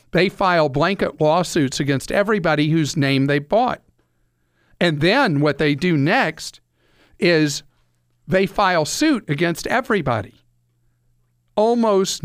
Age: 50-69